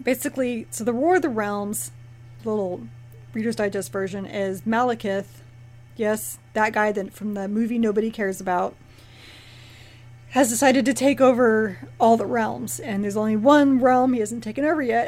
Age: 30-49